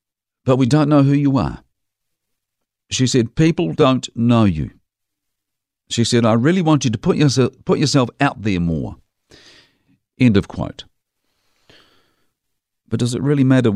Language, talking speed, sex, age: English, 155 wpm, male, 50-69